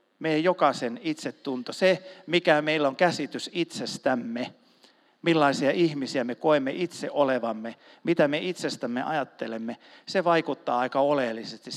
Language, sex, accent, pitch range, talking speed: Finnish, male, native, 125-175 Hz, 115 wpm